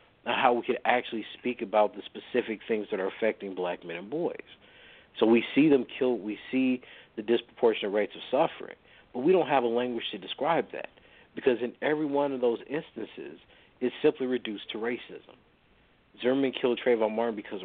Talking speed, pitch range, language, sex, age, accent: 185 wpm, 105-130 Hz, English, male, 50-69, American